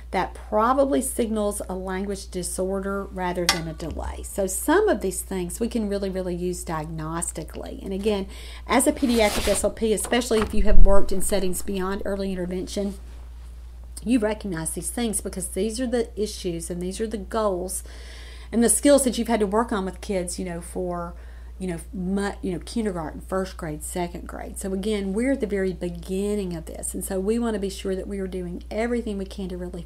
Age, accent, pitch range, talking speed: 40-59, American, 185-235 Hz, 200 wpm